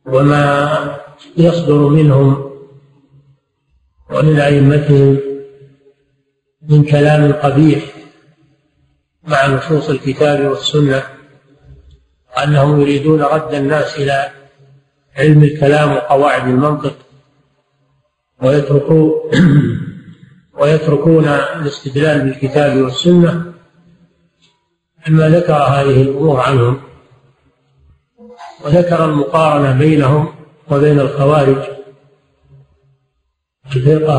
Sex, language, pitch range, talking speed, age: male, Arabic, 135-155 Hz, 65 wpm, 50-69